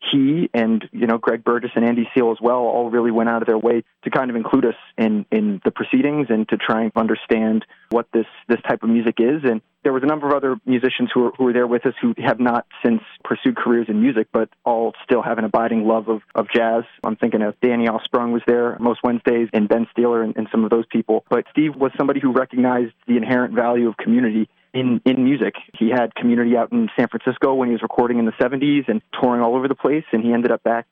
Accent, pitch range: American, 115-125 Hz